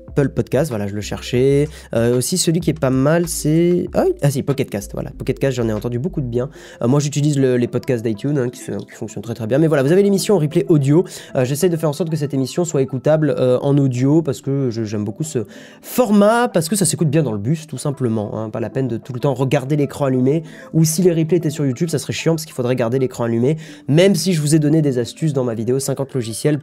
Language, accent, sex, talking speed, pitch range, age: French, French, male, 275 wpm, 125-175 Hz, 20-39